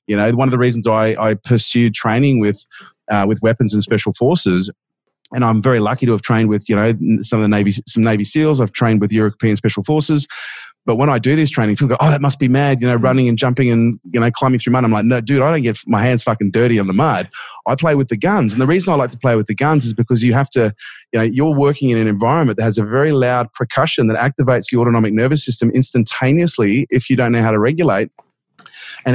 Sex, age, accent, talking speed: male, 30-49, Australian, 260 wpm